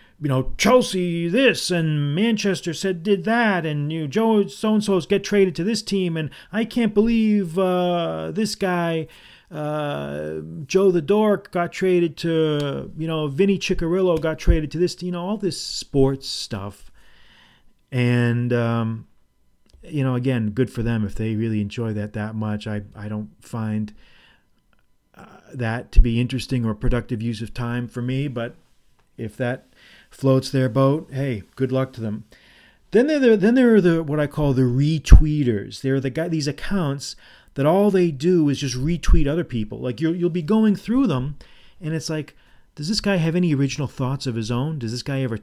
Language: English